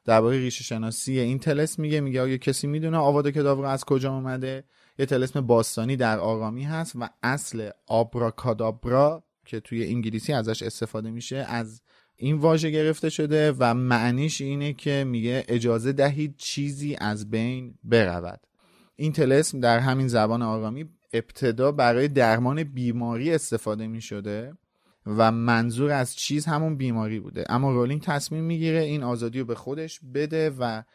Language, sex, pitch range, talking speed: Persian, male, 115-145 Hz, 145 wpm